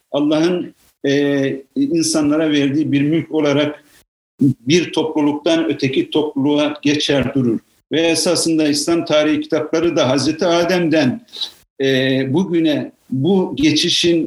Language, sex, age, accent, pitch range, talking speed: Turkish, male, 50-69, native, 140-190 Hz, 105 wpm